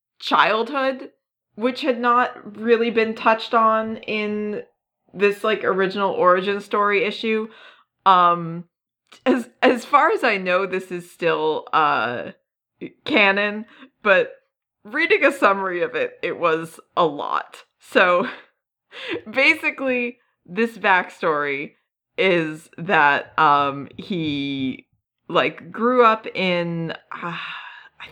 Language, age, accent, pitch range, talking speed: English, 30-49, American, 165-230 Hz, 105 wpm